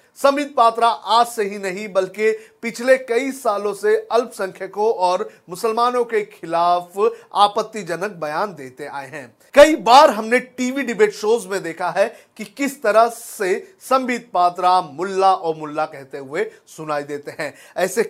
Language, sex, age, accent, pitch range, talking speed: Hindi, male, 40-59, native, 180-255 Hz, 150 wpm